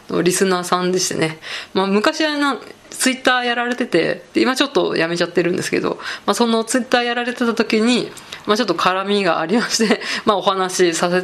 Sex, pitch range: female, 175-220 Hz